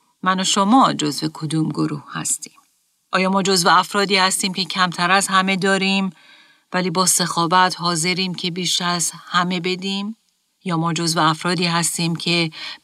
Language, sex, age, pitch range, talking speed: Persian, female, 40-59, 165-210 Hz, 150 wpm